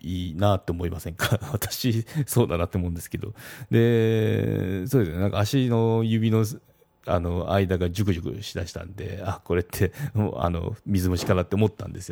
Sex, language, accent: male, Japanese, native